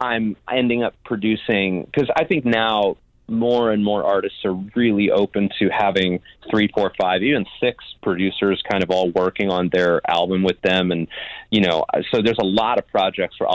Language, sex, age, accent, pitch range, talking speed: English, male, 30-49, American, 90-105 Hz, 185 wpm